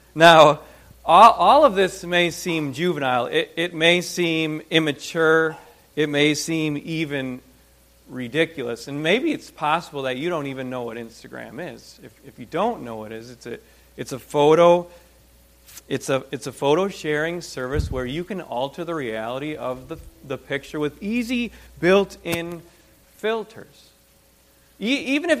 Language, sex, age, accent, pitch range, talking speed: English, male, 40-59, American, 125-190 Hz, 155 wpm